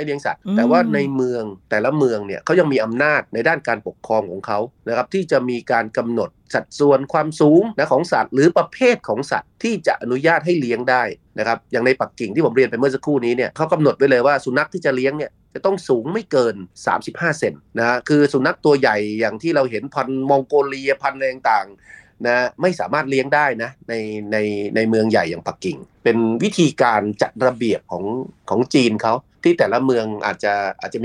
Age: 30-49